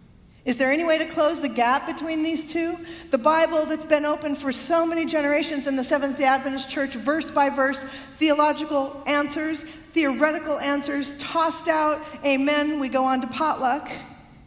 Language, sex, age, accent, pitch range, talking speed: English, female, 40-59, American, 230-290 Hz, 165 wpm